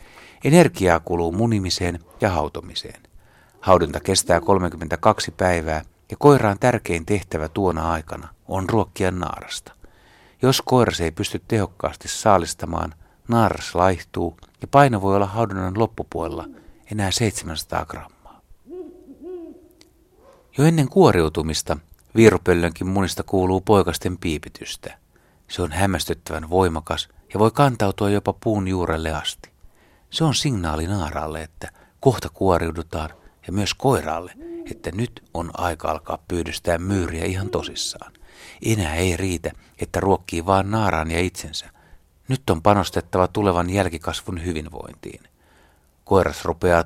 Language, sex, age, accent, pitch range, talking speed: Finnish, male, 60-79, native, 85-110 Hz, 115 wpm